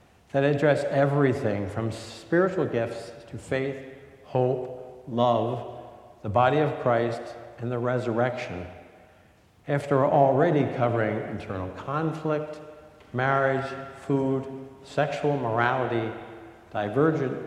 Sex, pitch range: male, 110-140 Hz